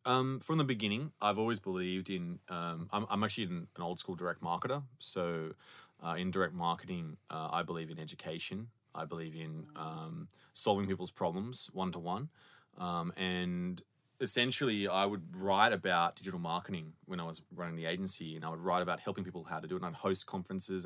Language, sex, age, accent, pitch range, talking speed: English, male, 20-39, Australian, 85-115 Hz, 180 wpm